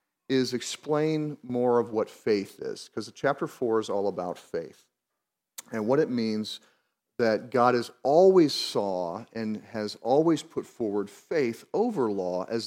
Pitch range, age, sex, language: 110-145 Hz, 40-59, male, English